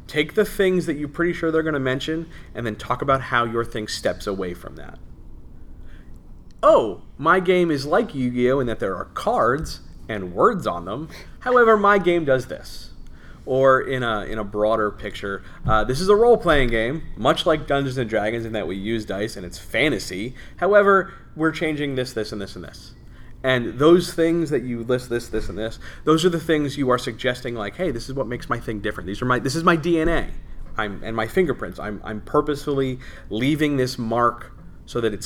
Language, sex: English, male